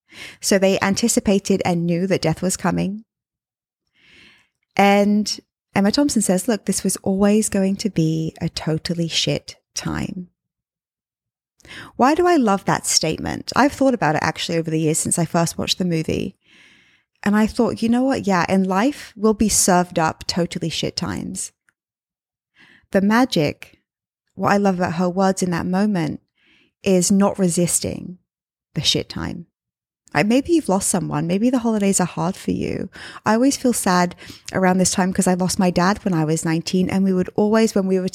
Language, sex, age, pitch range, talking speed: English, female, 20-39, 180-215 Hz, 175 wpm